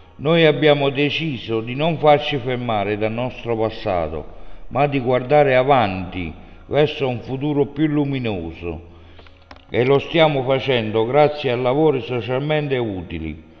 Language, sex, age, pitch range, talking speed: Italian, male, 60-79, 105-140 Hz, 125 wpm